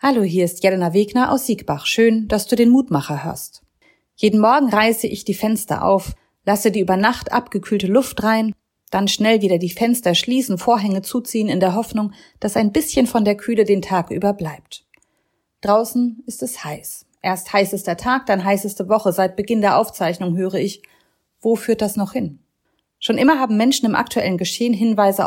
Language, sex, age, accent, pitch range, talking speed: German, female, 30-49, German, 190-230 Hz, 180 wpm